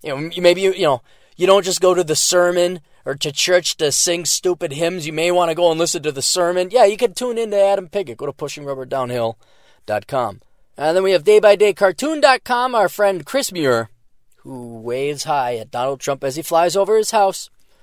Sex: male